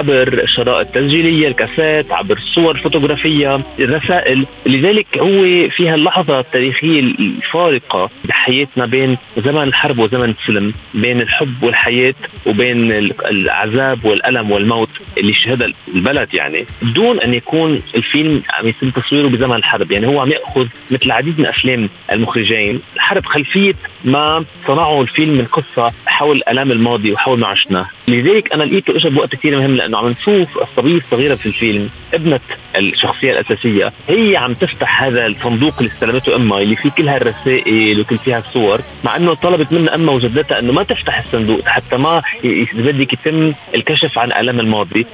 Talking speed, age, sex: 150 wpm, 30-49, male